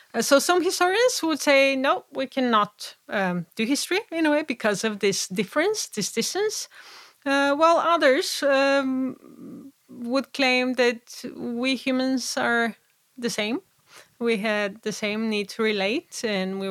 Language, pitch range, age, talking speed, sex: English, 215-270 Hz, 30-49, 145 wpm, female